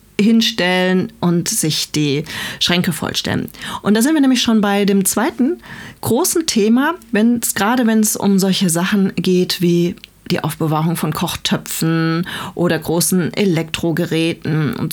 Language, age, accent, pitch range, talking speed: German, 40-59, German, 180-245 Hz, 135 wpm